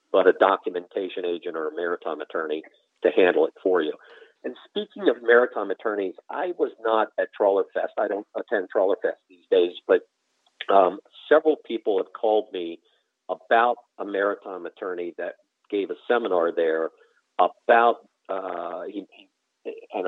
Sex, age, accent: male, 50-69, American